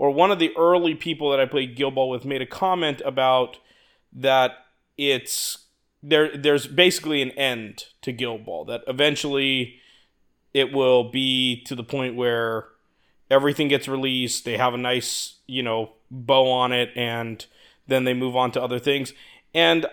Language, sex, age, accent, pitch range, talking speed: English, male, 20-39, American, 125-145 Hz, 170 wpm